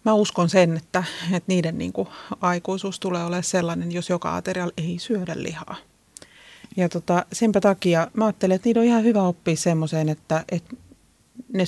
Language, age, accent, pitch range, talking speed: Finnish, 30-49, native, 165-200 Hz, 170 wpm